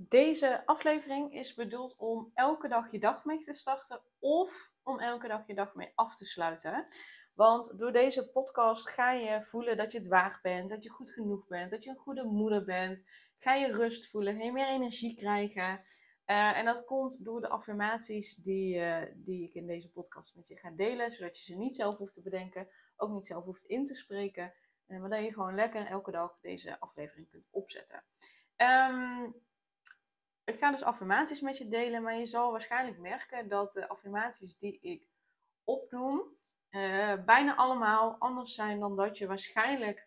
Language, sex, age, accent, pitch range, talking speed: Dutch, female, 20-39, Dutch, 195-245 Hz, 185 wpm